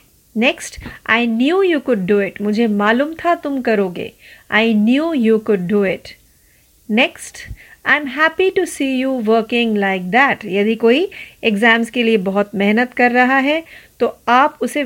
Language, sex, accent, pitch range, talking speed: Marathi, female, native, 210-270 Hz, 140 wpm